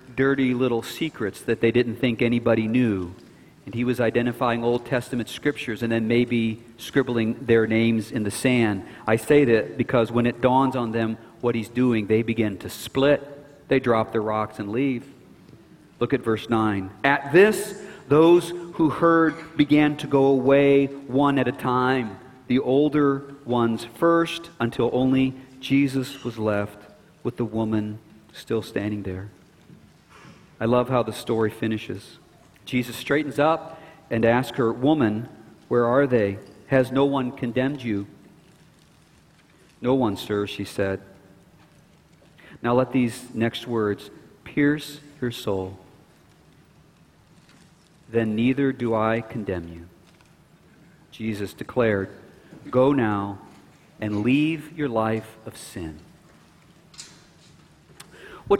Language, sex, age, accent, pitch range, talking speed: English, male, 40-59, American, 110-140 Hz, 135 wpm